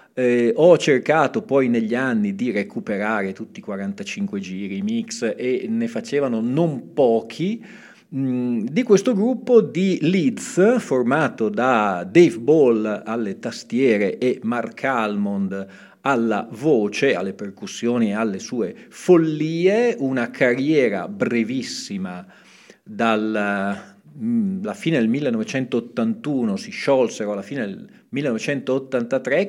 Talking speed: 110 wpm